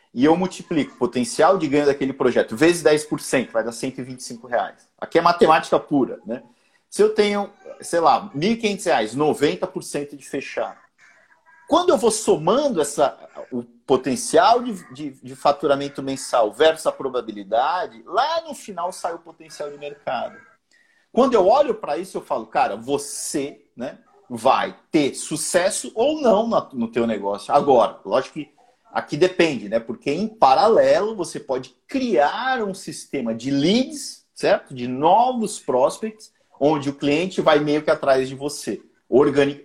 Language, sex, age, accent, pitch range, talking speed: Portuguese, male, 50-69, Brazilian, 140-210 Hz, 155 wpm